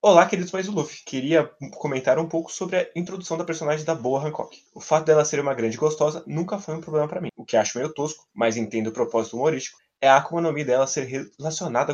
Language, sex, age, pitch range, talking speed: Portuguese, male, 20-39, 120-155 Hz, 230 wpm